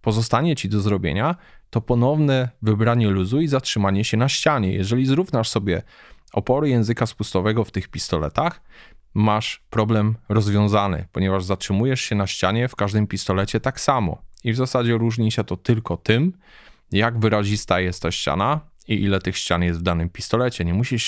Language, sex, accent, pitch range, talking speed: Polish, male, native, 95-115 Hz, 165 wpm